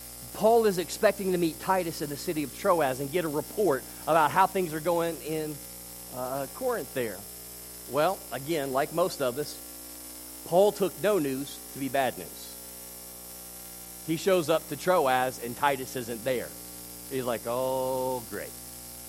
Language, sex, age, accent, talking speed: English, male, 40-59, American, 160 wpm